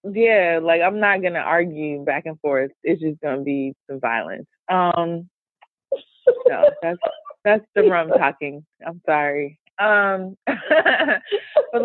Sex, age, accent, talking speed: female, 20-39, American, 140 wpm